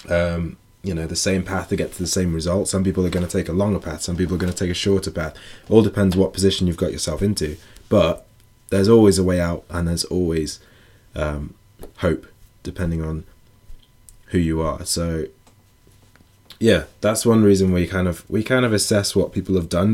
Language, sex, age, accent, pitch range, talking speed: English, male, 20-39, British, 85-100 Hz, 205 wpm